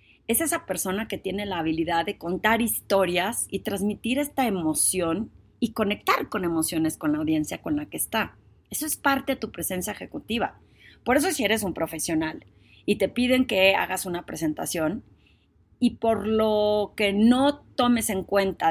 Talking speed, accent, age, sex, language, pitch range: 170 wpm, Mexican, 30-49, female, Spanish, 170-230 Hz